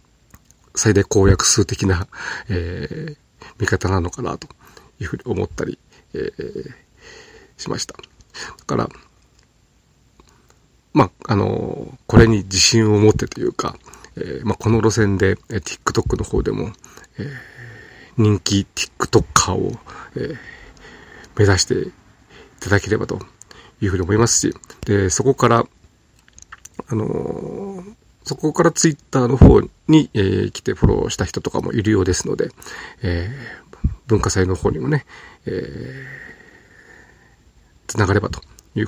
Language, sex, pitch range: Japanese, male, 95-115 Hz